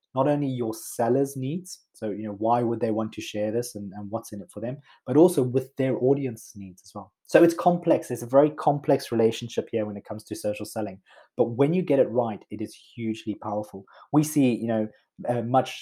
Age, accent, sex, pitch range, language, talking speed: 20-39, British, male, 105-125 Hz, English, 230 wpm